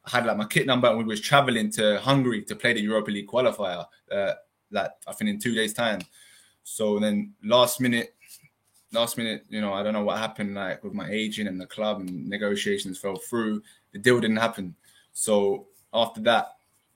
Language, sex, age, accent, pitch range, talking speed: English, male, 20-39, British, 105-125 Hz, 200 wpm